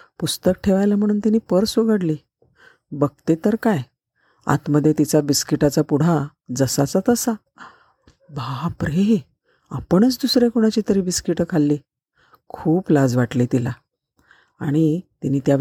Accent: native